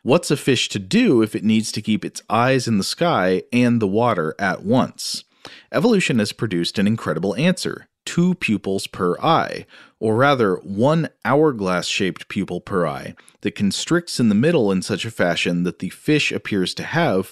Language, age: English, 40-59